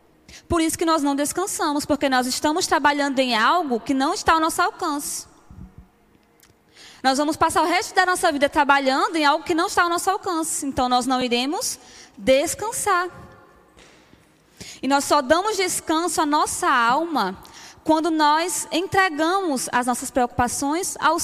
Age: 20-39